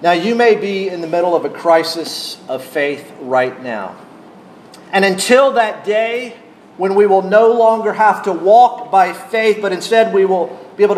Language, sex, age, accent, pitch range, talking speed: English, male, 40-59, American, 170-215 Hz, 185 wpm